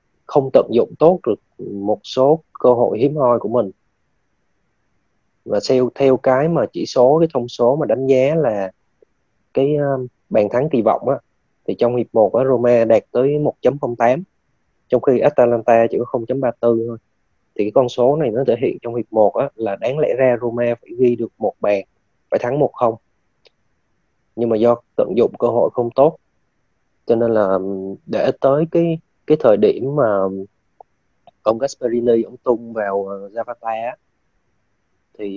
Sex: male